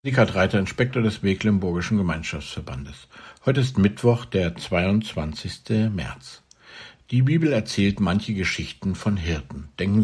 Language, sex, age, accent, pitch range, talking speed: German, male, 60-79, German, 85-115 Hz, 120 wpm